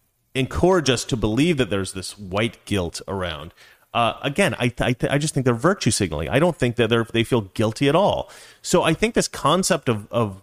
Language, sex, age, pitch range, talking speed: English, male, 30-49, 105-135 Hz, 220 wpm